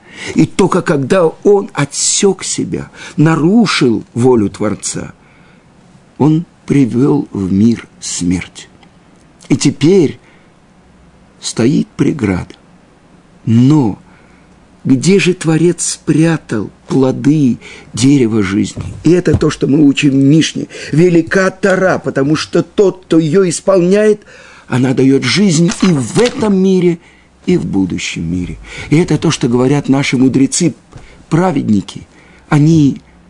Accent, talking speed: native, 110 wpm